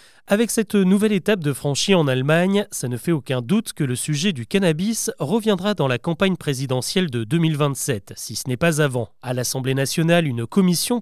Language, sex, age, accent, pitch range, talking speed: French, male, 30-49, French, 145-205 Hz, 190 wpm